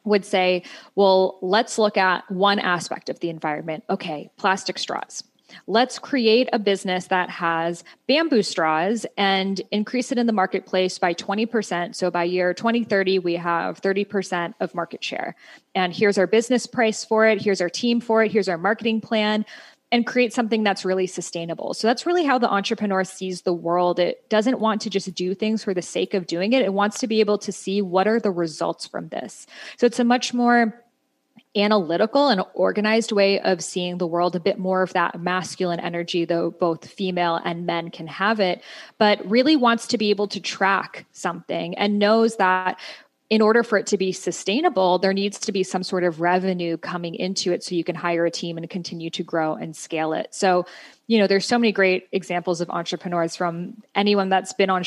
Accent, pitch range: American, 180-215 Hz